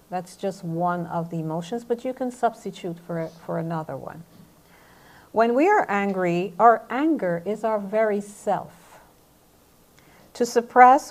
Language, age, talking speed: English, 50-69, 140 wpm